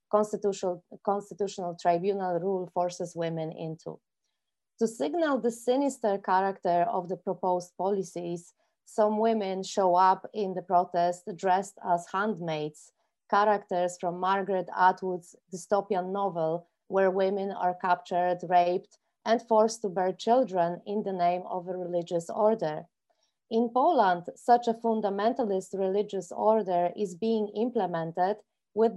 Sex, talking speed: female, 125 wpm